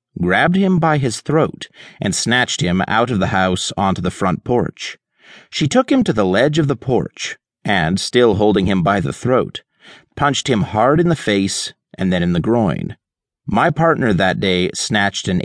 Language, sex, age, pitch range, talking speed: English, male, 40-59, 95-145 Hz, 190 wpm